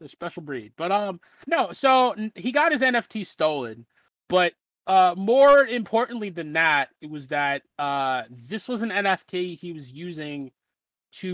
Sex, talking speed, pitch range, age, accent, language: male, 155 wpm, 140-215 Hz, 30-49, American, English